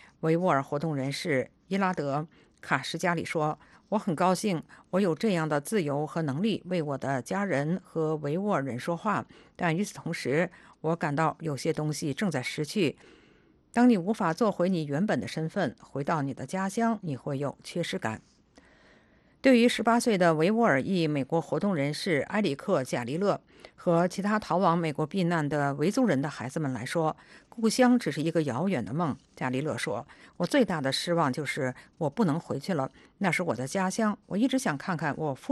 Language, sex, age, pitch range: English, female, 50-69, 150-195 Hz